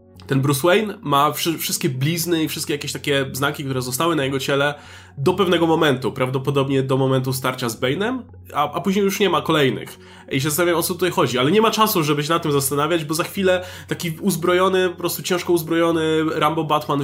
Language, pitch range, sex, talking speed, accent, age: Polish, 135-175 Hz, male, 210 wpm, native, 20-39